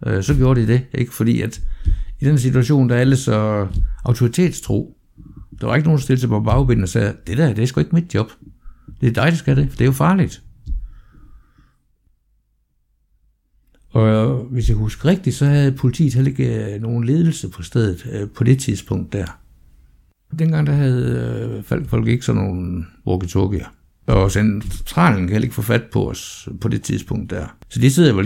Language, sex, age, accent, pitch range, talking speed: Danish, male, 60-79, native, 95-130 Hz, 180 wpm